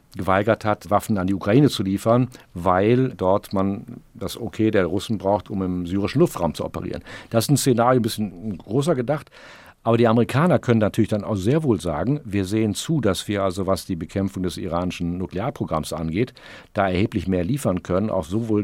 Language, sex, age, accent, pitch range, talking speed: German, male, 50-69, German, 95-115 Hz, 195 wpm